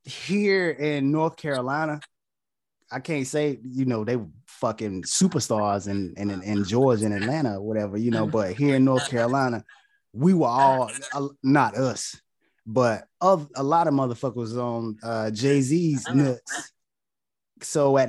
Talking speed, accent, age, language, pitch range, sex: 160 wpm, American, 20-39, English, 115-140 Hz, male